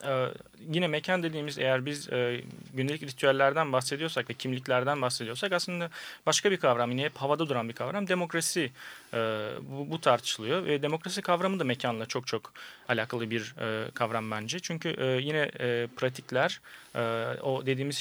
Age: 30-49